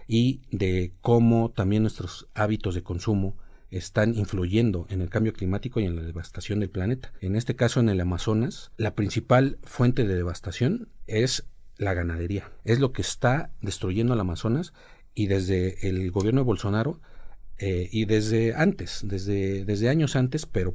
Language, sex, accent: Spanish, male, Mexican